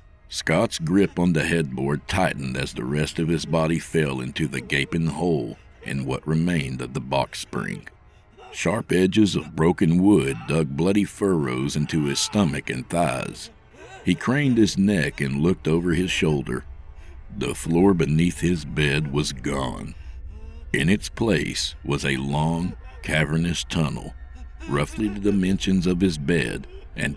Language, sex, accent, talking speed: English, male, American, 150 wpm